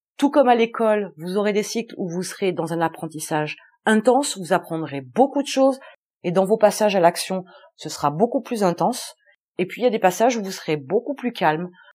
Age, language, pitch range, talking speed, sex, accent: 30-49, French, 180-235 Hz, 220 wpm, female, French